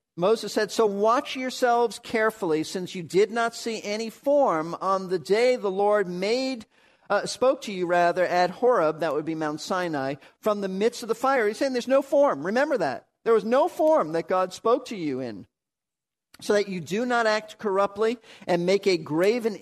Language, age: English, 50-69